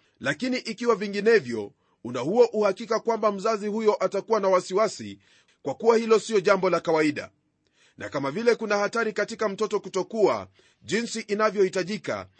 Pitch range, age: 190-225 Hz, 30-49